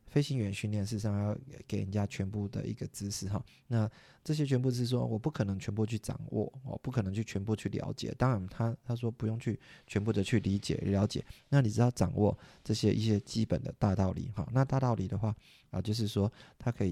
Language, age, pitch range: Chinese, 20-39, 100-120 Hz